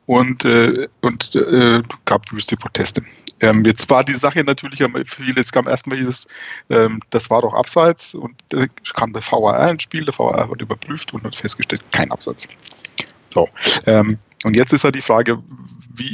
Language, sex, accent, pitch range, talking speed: German, male, German, 115-140 Hz, 180 wpm